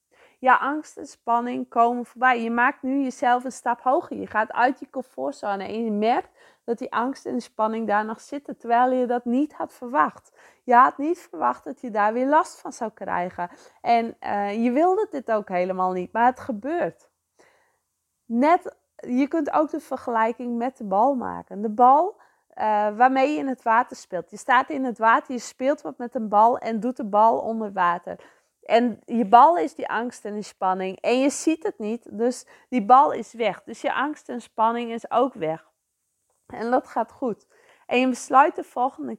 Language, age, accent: English, 20-39, Dutch